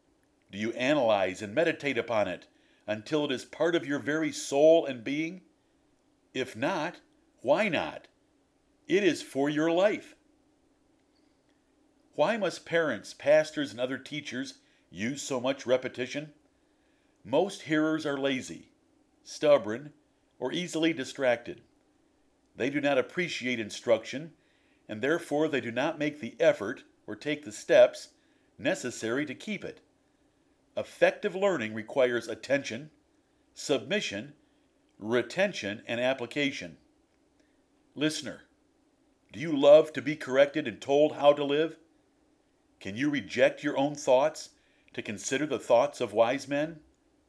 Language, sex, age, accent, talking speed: English, male, 50-69, American, 125 wpm